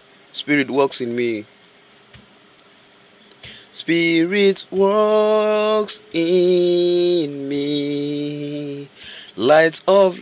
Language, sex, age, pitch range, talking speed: English, male, 30-49, 165-215 Hz, 60 wpm